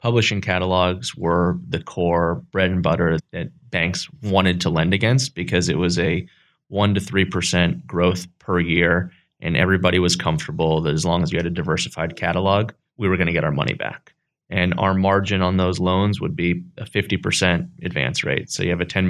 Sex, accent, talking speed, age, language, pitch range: male, American, 195 wpm, 20-39, English, 90-100 Hz